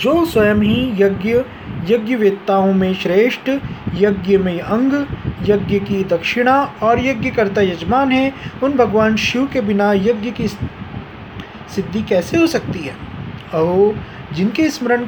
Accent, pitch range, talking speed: native, 195-245 Hz, 125 wpm